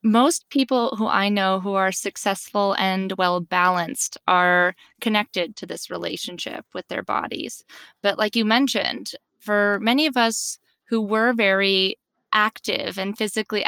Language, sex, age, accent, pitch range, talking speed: English, female, 20-39, American, 185-235 Hz, 140 wpm